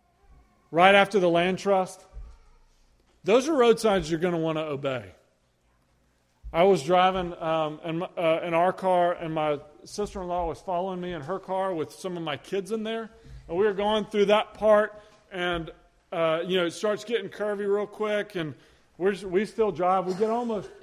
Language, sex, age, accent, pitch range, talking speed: English, male, 40-59, American, 155-205 Hz, 185 wpm